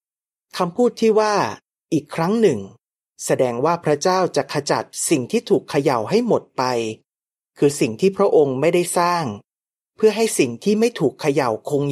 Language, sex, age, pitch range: Thai, male, 30-49, 130-185 Hz